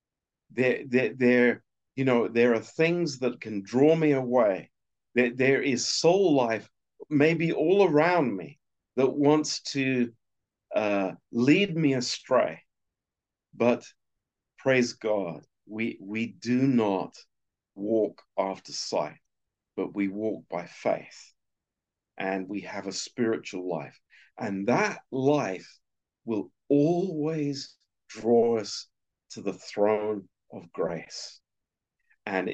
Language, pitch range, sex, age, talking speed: Romanian, 100-130 Hz, male, 50-69, 115 wpm